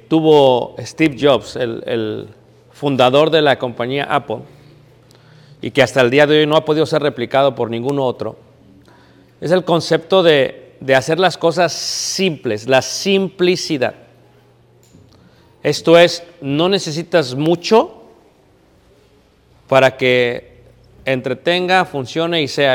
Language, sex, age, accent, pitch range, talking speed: Spanish, male, 50-69, Mexican, 130-170 Hz, 125 wpm